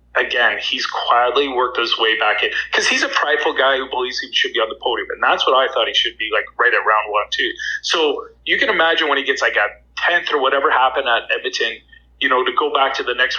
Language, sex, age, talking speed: English, male, 30-49, 260 wpm